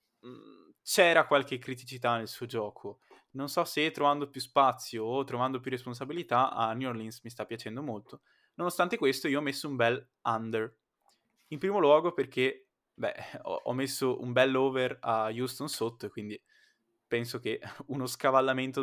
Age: 20-39